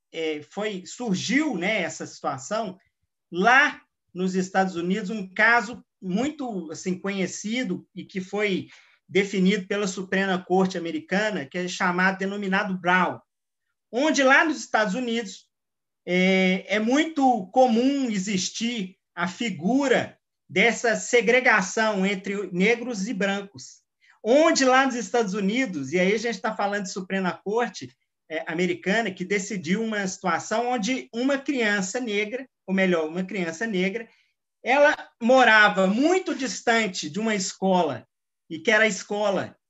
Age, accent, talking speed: 40-59, Brazilian, 130 wpm